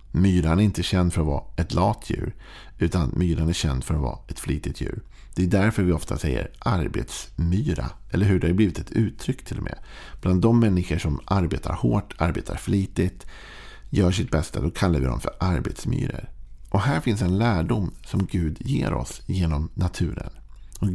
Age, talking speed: 50-69, 185 wpm